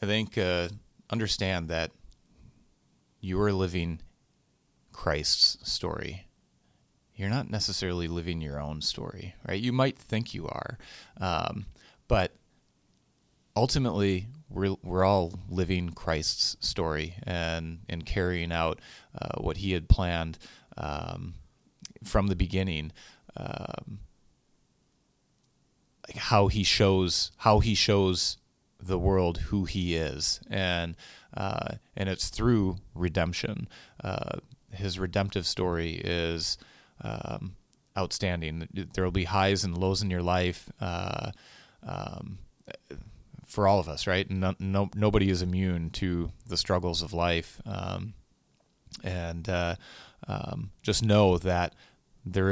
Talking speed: 120 wpm